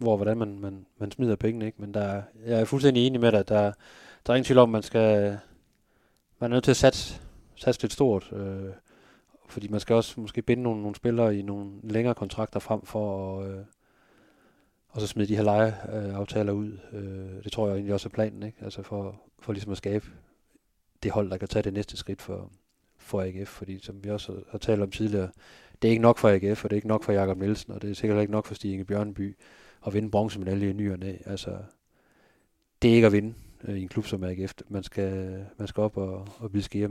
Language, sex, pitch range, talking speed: Danish, male, 100-115 Hz, 240 wpm